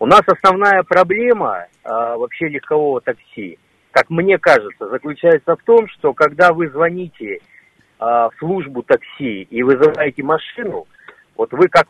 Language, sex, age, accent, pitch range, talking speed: Russian, male, 50-69, native, 150-200 Hz, 140 wpm